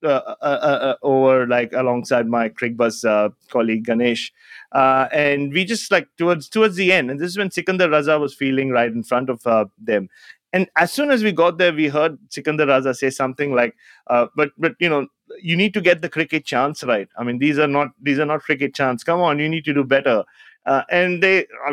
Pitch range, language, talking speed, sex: 125-160 Hz, English, 230 wpm, male